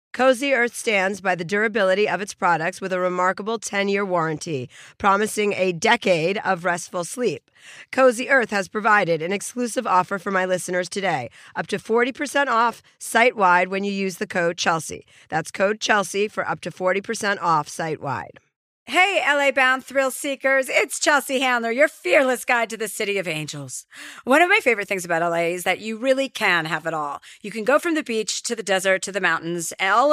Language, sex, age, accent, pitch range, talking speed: English, female, 40-59, American, 185-245 Hz, 185 wpm